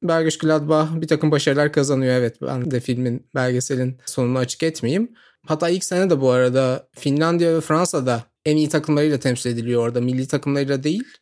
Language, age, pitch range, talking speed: Turkish, 30-49, 135-175 Hz, 170 wpm